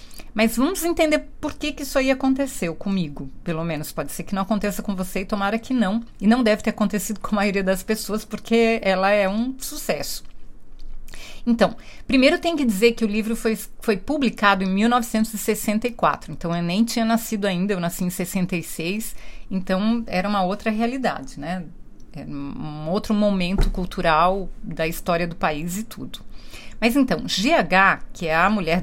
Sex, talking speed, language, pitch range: female, 175 wpm, Portuguese, 185-240 Hz